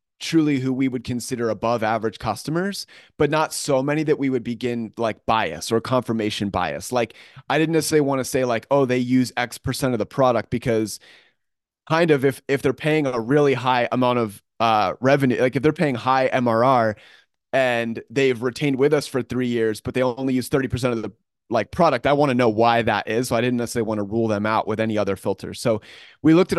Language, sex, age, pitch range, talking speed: English, male, 30-49, 110-135 Hz, 220 wpm